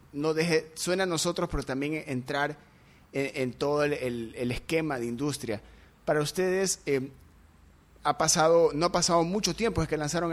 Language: Spanish